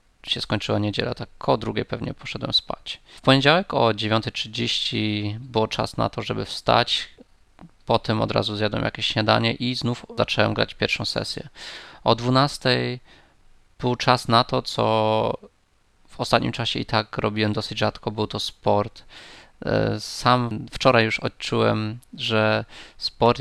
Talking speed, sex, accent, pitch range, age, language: 140 wpm, male, native, 105-115 Hz, 20-39, Polish